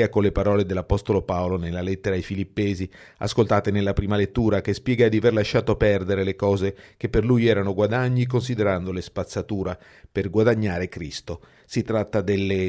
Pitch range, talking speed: 95-115 Hz, 160 wpm